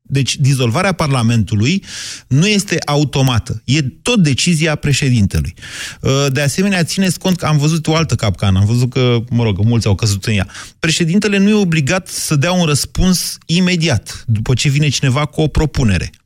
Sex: male